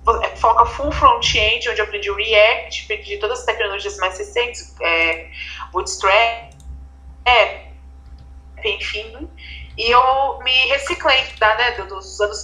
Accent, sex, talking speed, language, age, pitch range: Brazilian, female, 110 wpm, Portuguese, 20-39, 205-315 Hz